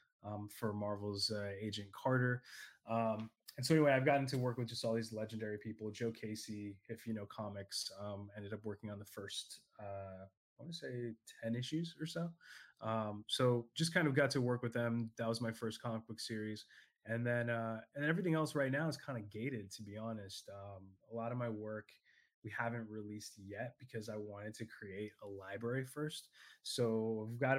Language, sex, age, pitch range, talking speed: English, male, 20-39, 105-120 Hz, 210 wpm